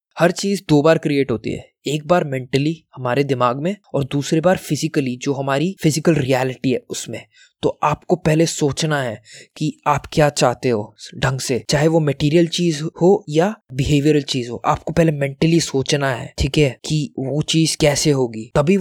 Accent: native